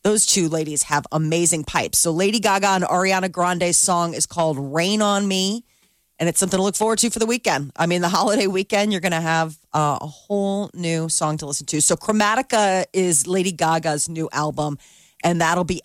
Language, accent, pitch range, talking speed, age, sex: English, American, 160-205 Hz, 205 wpm, 30-49, female